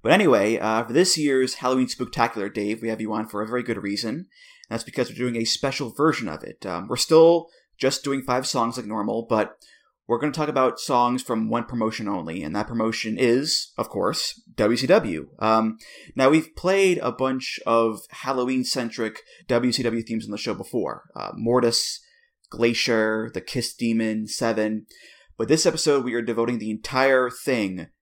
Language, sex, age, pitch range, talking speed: English, male, 20-39, 110-140 Hz, 180 wpm